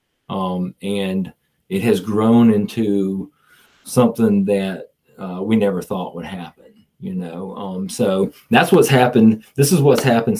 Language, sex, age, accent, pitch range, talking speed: English, male, 40-59, American, 105-150 Hz, 145 wpm